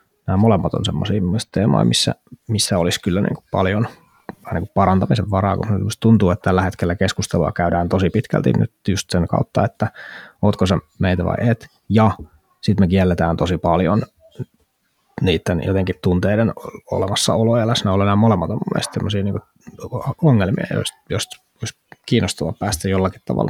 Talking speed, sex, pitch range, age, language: 150 wpm, male, 95-115 Hz, 20-39, Finnish